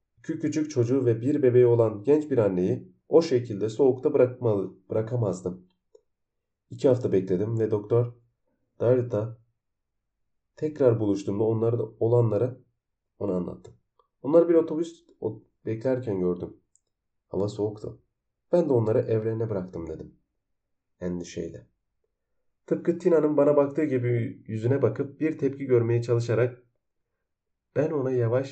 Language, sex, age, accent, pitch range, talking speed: Turkish, male, 40-59, native, 100-135 Hz, 115 wpm